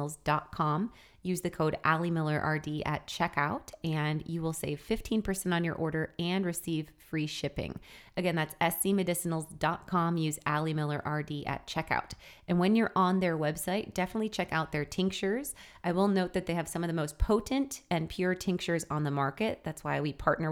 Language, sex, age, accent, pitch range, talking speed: English, female, 20-39, American, 150-180 Hz, 180 wpm